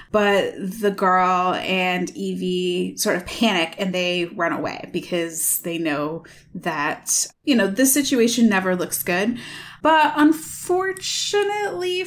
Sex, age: female, 20-39